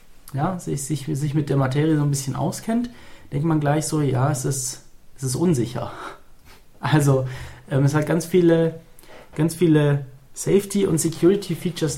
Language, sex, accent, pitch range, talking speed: German, male, German, 135-170 Hz, 165 wpm